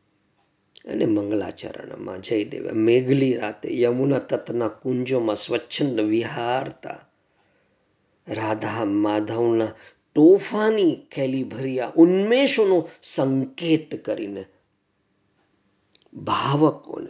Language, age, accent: Gujarati, 50-69, native